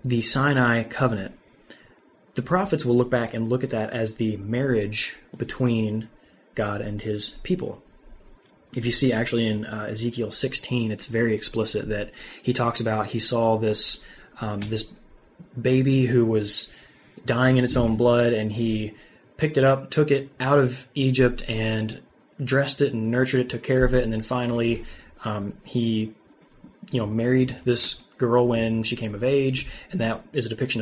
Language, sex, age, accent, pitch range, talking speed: English, male, 20-39, American, 110-125 Hz, 170 wpm